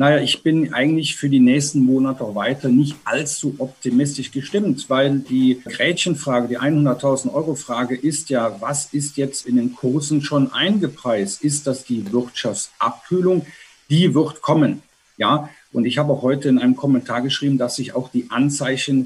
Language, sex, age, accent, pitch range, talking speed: German, male, 50-69, German, 130-155 Hz, 160 wpm